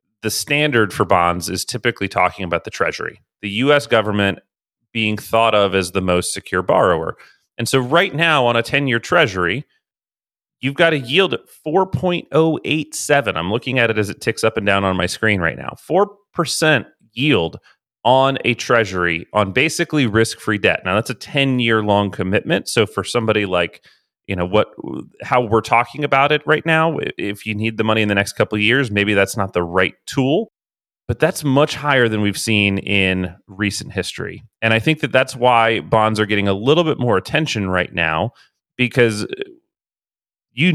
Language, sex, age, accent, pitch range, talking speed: English, male, 30-49, American, 100-145 Hz, 185 wpm